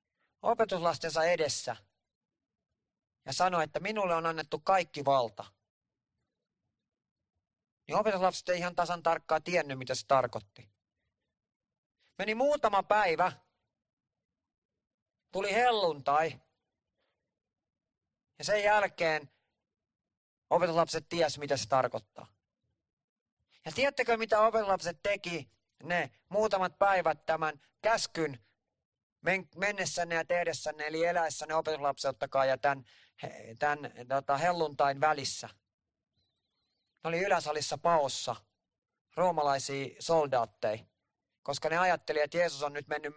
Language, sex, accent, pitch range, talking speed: Finnish, male, native, 125-170 Hz, 95 wpm